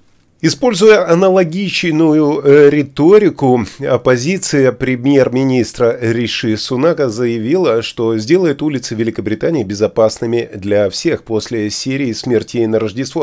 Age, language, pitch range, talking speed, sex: 30-49, Russian, 115-155 Hz, 90 wpm, male